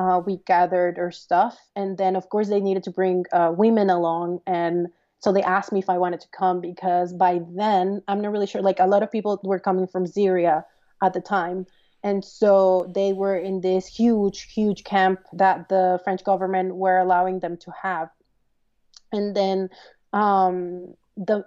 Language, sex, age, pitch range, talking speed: English, female, 30-49, 185-220 Hz, 185 wpm